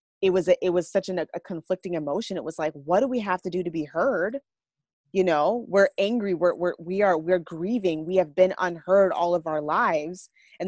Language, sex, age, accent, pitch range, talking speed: English, female, 20-39, American, 180-220 Hz, 230 wpm